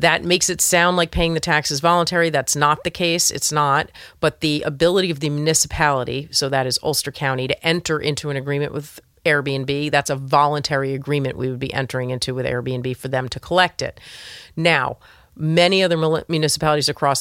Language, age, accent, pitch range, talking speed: English, 40-59, American, 135-160 Hz, 190 wpm